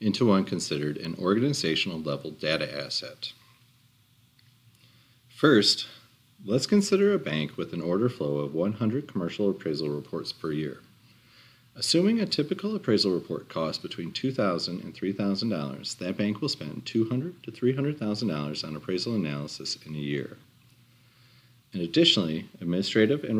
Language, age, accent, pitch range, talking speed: English, 40-59, American, 85-125 Hz, 130 wpm